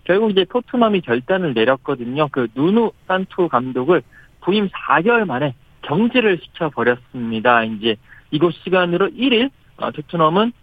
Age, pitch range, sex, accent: 40-59, 140-195 Hz, male, native